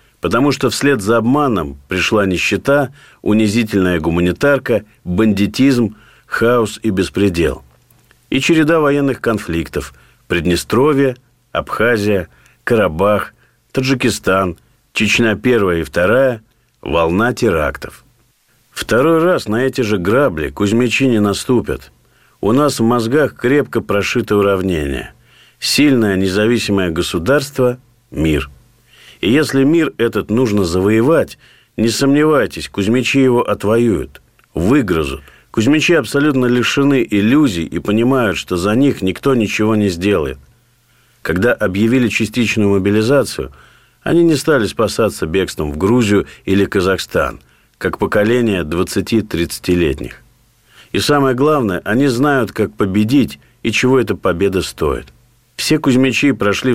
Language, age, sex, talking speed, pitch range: Russian, 50-69, male, 110 wpm, 100-130 Hz